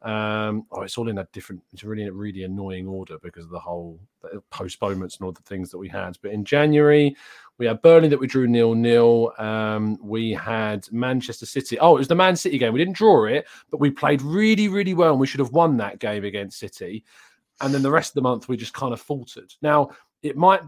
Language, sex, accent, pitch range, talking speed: English, male, British, 110-135 Hz, 240 wpm